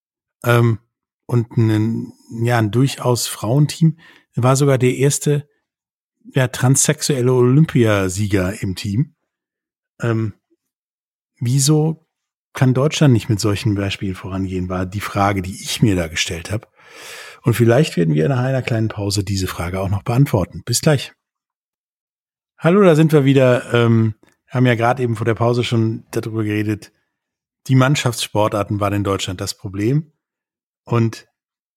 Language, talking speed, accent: German, 140 wpm, German